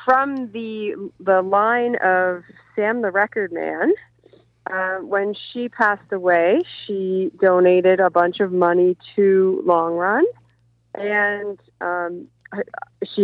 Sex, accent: female, American